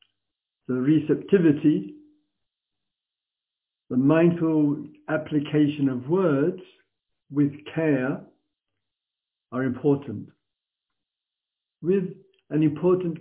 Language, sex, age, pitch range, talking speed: English, male, 60-79, 125-165 Hz, 65 wpm